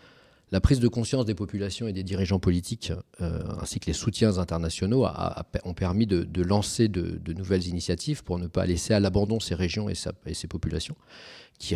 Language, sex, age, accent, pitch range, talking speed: French, male, 40-59, French, 90-110 Hz, 195 wpm